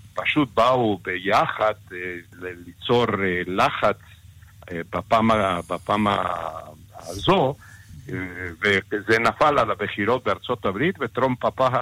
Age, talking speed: 60-79, 100 wpm